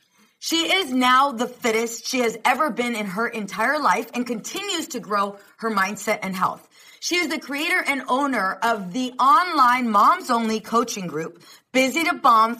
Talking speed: 170 wpm